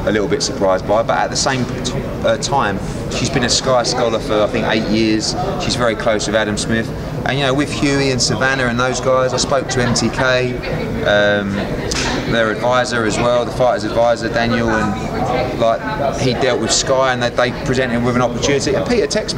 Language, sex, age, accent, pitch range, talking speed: English, male, 30-49, British, 110-135 Hz, 210 wpm